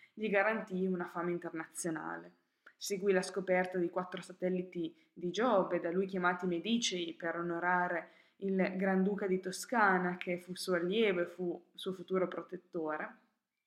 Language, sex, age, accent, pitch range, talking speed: Italian, female, 20-39, native, 175-195 Hz, 140 wpm